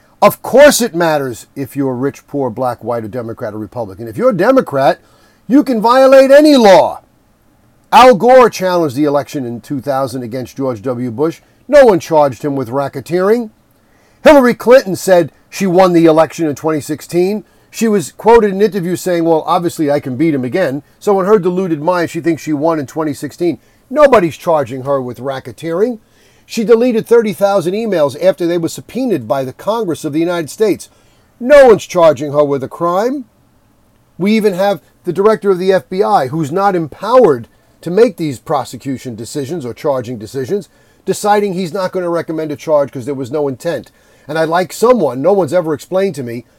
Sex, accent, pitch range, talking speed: male, American, 140-195 Hz, 185 wpm